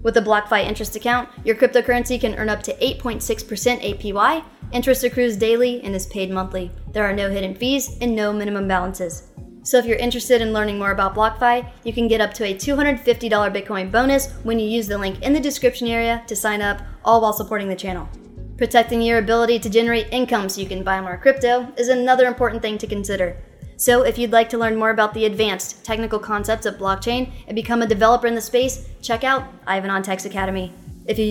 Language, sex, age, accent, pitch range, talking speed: English, female, 20-39, American, 205-240 Hz, 215 wpm